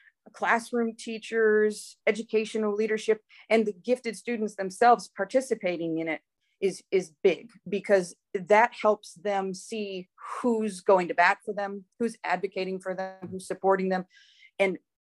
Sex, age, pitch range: female, 30-49, 185-220 Hz